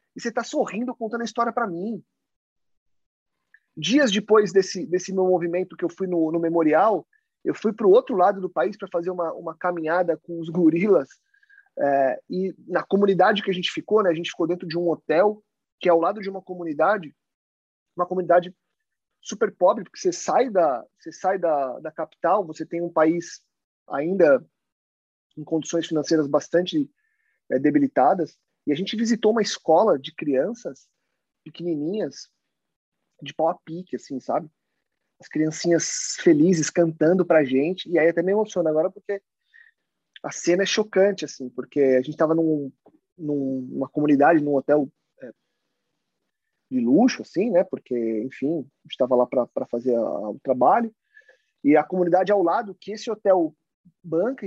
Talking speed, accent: 165 wpm, Brazilian